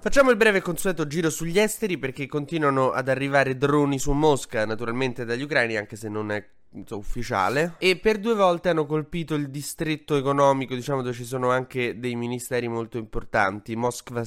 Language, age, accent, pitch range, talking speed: Italian, 20-39, native, 115-150 Hz, 170 wpm